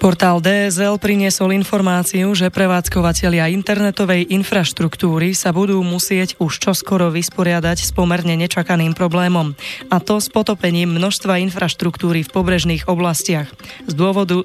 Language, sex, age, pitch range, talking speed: Slovak, female, 20-39, 165-190 Hz, 120 wpm